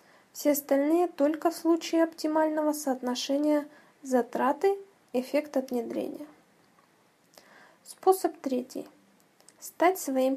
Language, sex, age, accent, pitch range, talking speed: Russian, female, 20-39, native, 270-330 Hz, 80 wpm